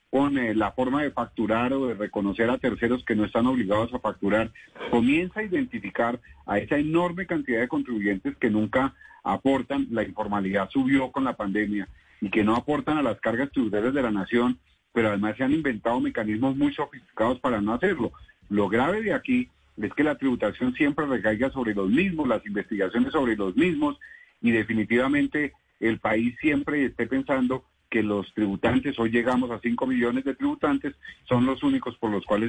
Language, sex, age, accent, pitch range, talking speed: Spanish, male, 40-59, Colombian, 110-145 Hz, 175 wpm